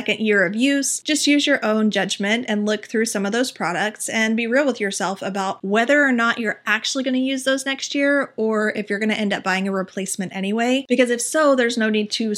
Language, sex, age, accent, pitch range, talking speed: English, female, 30-49, American, 200-240 Hz, 245 wpm